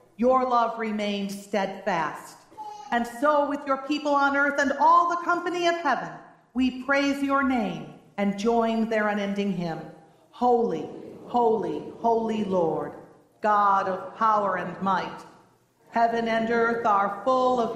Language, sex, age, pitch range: English, female, 40-59, 200-260 Hz